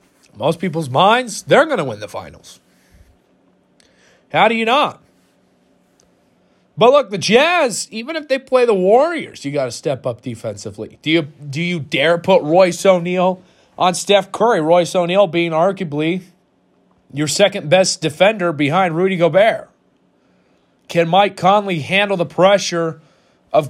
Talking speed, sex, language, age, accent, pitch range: 145 wpm, male, English, 30-49, American, 165-205 Hz